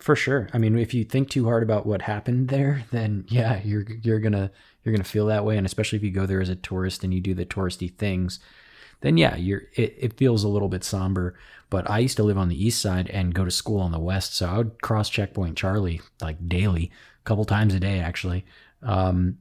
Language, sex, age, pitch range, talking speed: English, male, 20-39, 95-110 Hz, 245 wpm